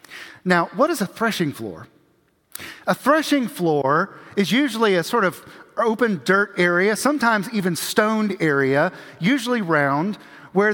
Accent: American